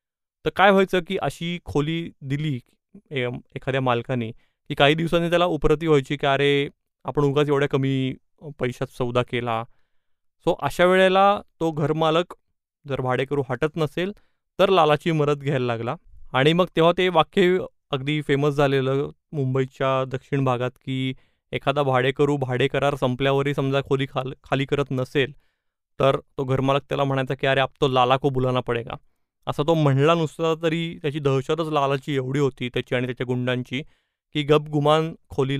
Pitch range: 130-155 Hz